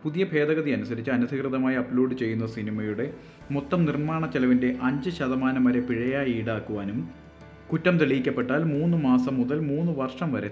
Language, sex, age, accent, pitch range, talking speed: Malayalam, male, 30-49, native, 120-145 Hz, 120 wpm